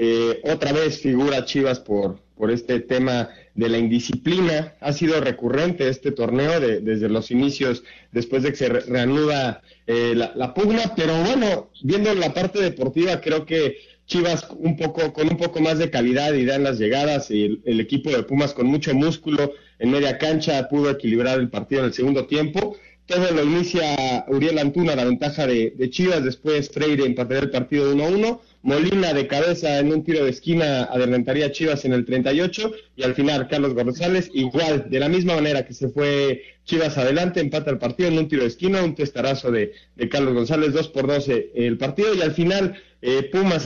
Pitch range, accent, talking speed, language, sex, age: 125-160 Hz, Mexican, 195 wpm, Spanish, male, 40-59